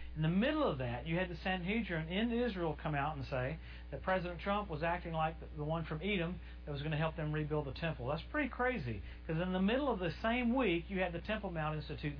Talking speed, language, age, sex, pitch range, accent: 250 wpm, English, 50-69, male, 140-175 Hz, American